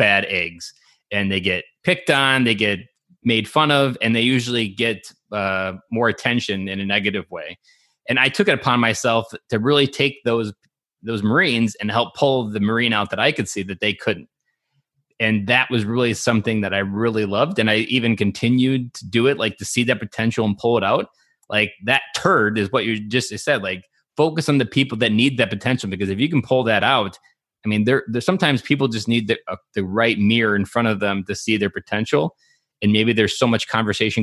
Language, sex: English, male